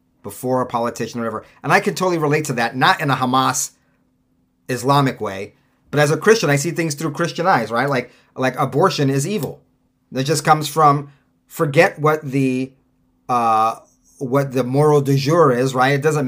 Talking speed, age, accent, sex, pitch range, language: 190 wpm, 30-49, American, male, 130-160 Hz, English